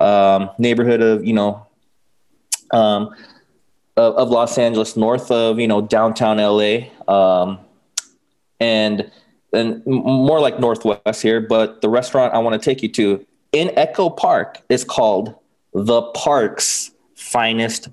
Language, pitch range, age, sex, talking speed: English, 110-130 Hz, 20-39, male, 135 wpm